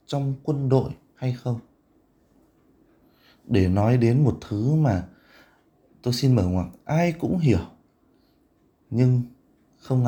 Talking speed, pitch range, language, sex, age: 125 wpm, 105-135 Hz, Vietnamese, male, 20-39